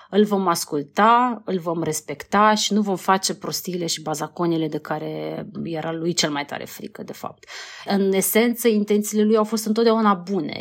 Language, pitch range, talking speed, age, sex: Romanian, 165-210 Hz, 175 wpm, 30-49, female